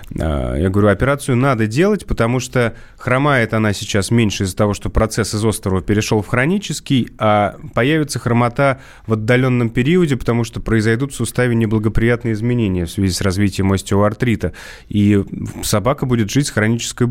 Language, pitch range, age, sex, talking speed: Russian, 100-125 Hz, 30-49, male, 155 wpm